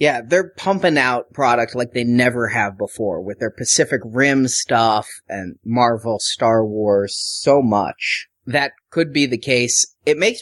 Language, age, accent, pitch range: English, 30-49, American, 115-145 Hz